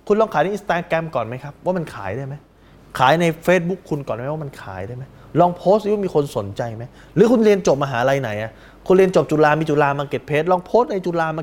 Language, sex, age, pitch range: Thai, male, 20-39, 115-180 Hz